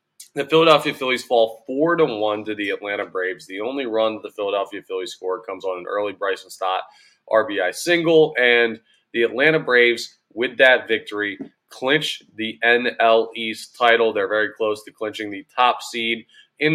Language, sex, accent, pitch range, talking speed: English, male, American, 100-125 Hz, 165 wpm